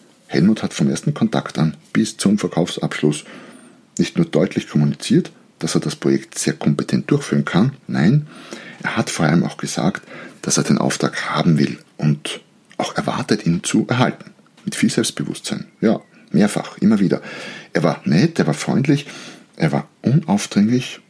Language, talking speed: German, 160 wpm